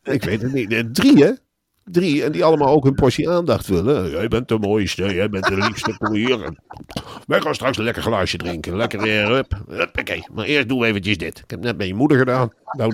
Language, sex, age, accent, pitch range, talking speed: Dutch, male, 50-69, Dutch, 100-170 Hz, 230 wpm